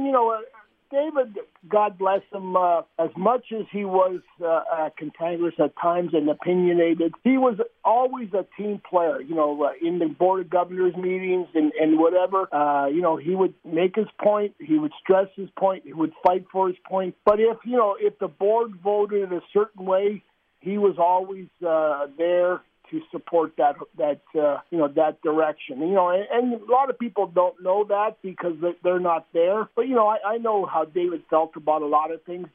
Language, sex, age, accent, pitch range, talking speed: English, male, 50-69, American, 160-205 Hz, 205 wpm